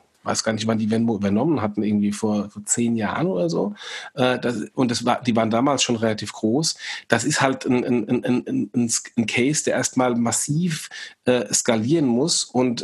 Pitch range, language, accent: 120-145 Hz, German, German